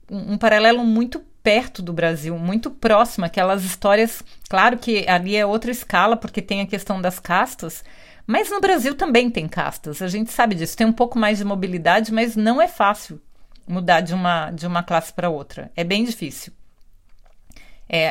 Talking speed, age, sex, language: 175 wpm, 40-59, female, Portuguese